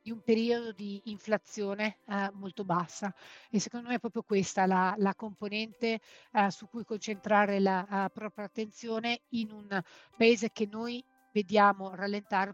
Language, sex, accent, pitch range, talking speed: Italian, female, native, 190-220 Hz, 155 wpm